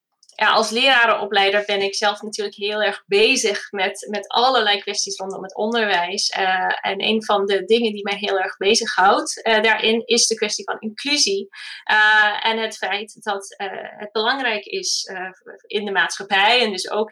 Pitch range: 200-240 Hz